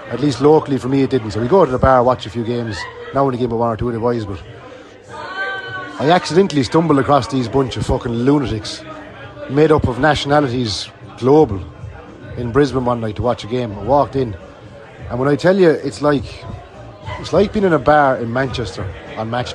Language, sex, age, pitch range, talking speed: English, male, 30-49, 115-160 Hz, 210 wpm